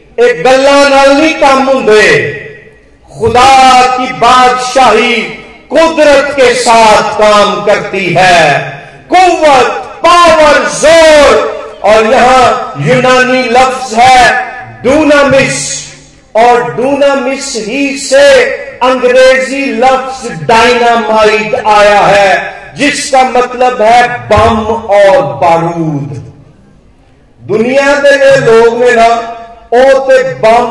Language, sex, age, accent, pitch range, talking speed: Hindi, male, 50-69, native, 225-300 Hz, 85 wpm